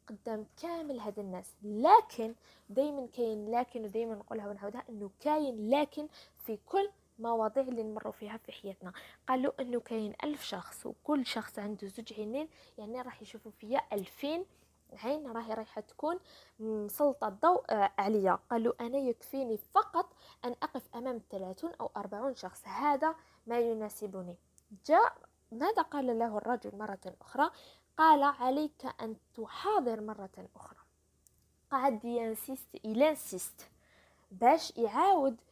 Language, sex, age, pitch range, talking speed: French, female, 20-39, 215-285 Hz, 125 wpm